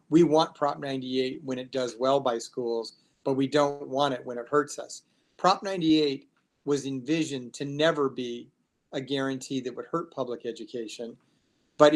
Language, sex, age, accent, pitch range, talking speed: English, male, 40-59, American, 130-150 Hz, 170 wpm